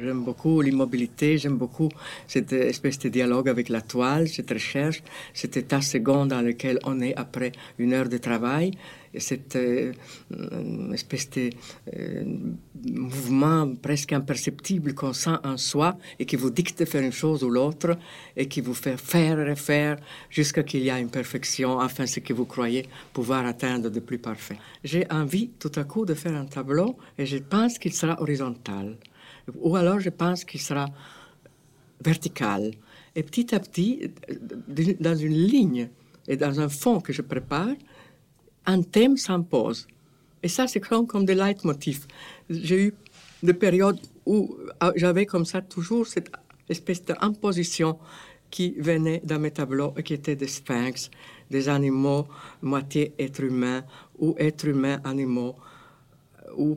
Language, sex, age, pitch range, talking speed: French, female, 60-79, 130-170 Hz, 155 wpm